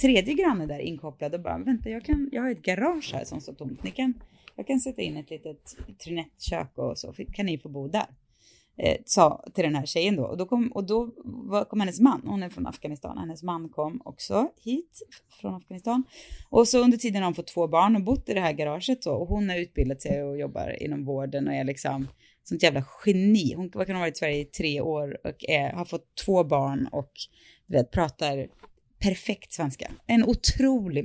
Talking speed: 215 wpm